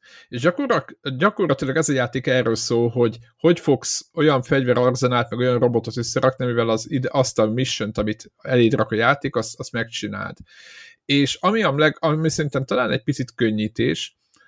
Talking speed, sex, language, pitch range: 160 wpm, male, Hungarian, 115-140 Hz